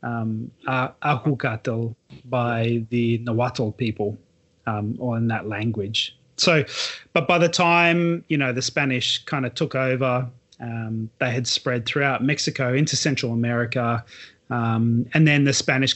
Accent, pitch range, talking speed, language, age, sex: Australian, 120-145 Hz, 145 wpm, English, 30-49, male